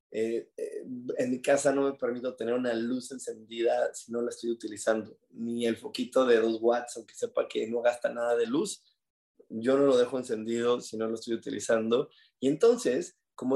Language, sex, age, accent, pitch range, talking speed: Spanish, male, 20-39, Mexican, 115-145 Hz, 195 wpm